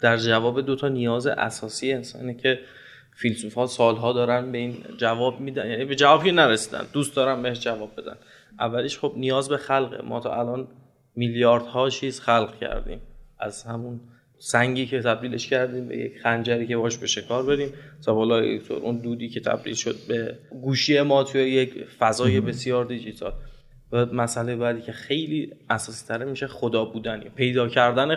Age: 20-39